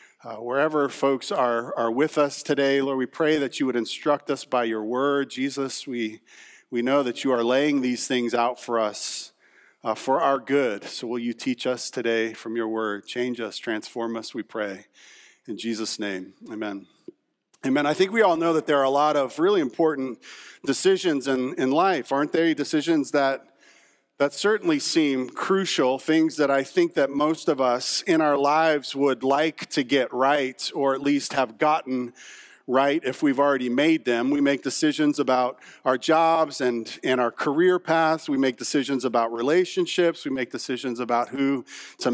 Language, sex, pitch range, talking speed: English, male, 125-160 Hz, 185 wpm